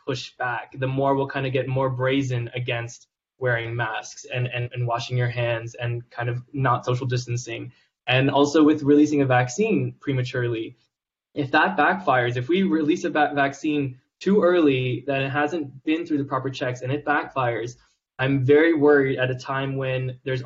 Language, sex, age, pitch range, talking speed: English, male, 20-39, 125-145 Hz, 180 wpm